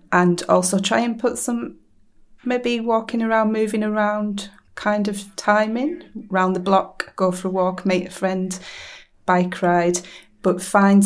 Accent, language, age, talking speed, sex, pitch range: British, English, 30-49, 150 wpm, female, 175-200 Hz